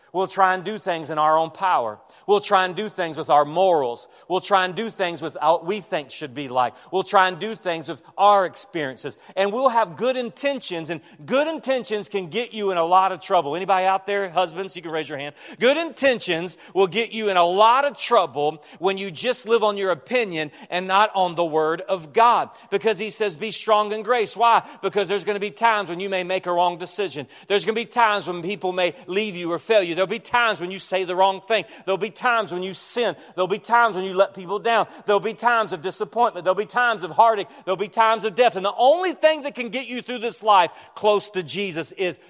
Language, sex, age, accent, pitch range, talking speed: English, male, 40-59, American, 165-215 Hz, 245 wpm